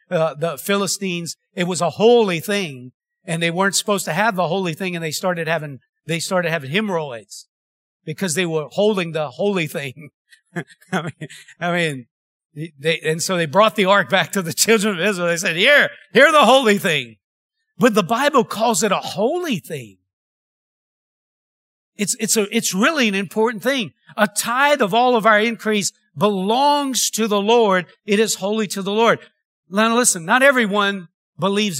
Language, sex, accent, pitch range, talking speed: English, male, American, 175-230 Hz, 175 wpm